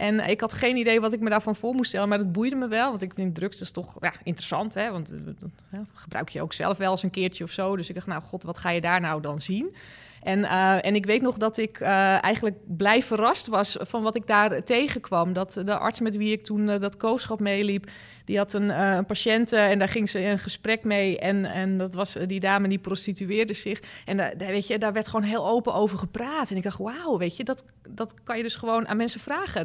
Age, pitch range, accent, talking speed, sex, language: 20-39, 195-225 Hz, Dutch, 265 wpm, female, Dutch